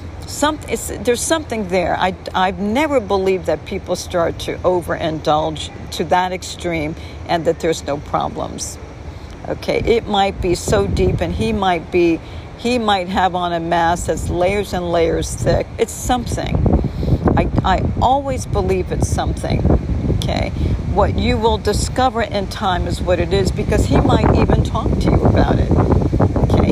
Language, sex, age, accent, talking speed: English, female, 60-79, American, 160 wpm